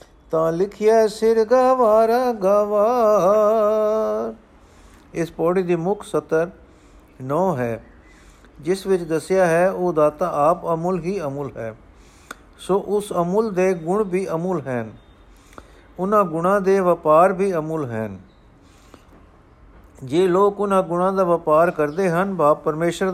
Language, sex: Punjabi, male